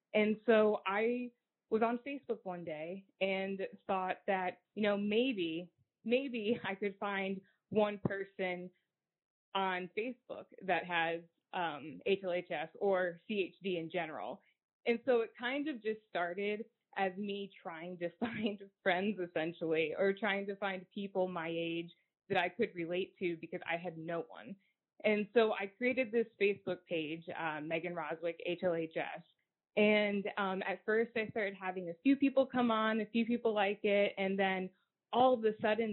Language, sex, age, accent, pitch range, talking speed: English, female, 20-39, American, 180-225 Hz, 160 wpm